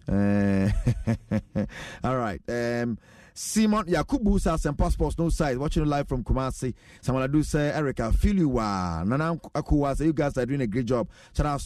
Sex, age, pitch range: male, 30-49, 115-145 Hz